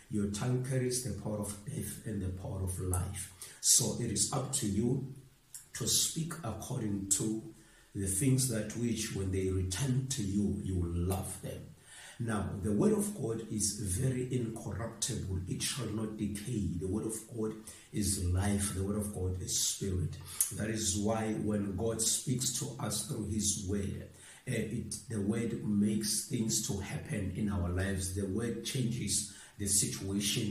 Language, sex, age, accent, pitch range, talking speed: English, male, 50-69, South African, 100-115 Hz, 165 wpm